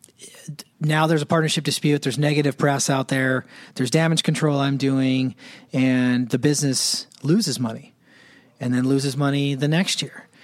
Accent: American